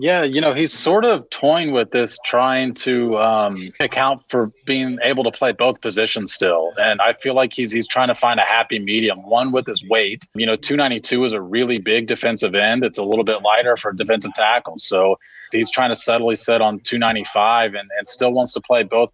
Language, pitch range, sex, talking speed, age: English, 110-125 Hz, male, 215 wpm, 30-49